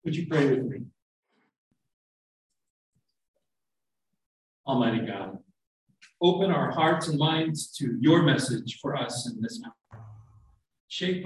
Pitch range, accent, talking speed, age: 125-185 Hz, American, 110 wpm, 50-69